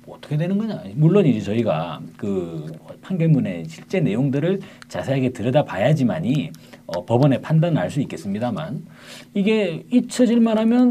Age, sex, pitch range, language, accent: 40-59, male, 125-190 Hz, Korean, native